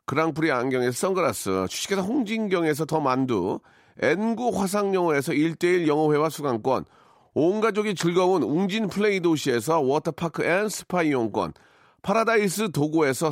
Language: Korean